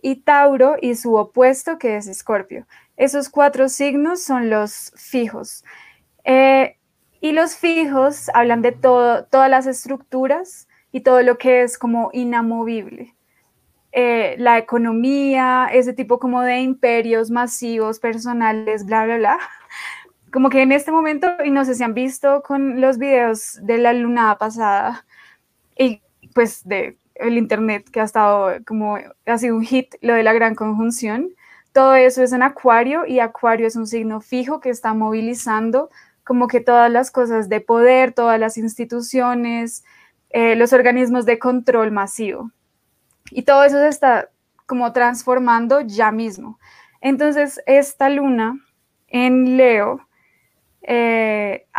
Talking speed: 145 wpm